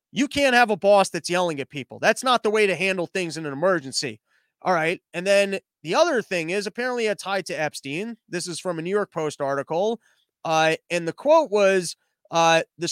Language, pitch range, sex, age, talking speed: English, 160-215 Hz, male, 30-49, 220 wpm